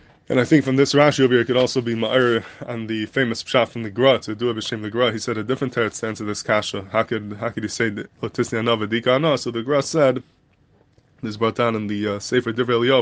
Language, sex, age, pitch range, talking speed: English, male, 20-39, 115-130 Hz, 255 wpm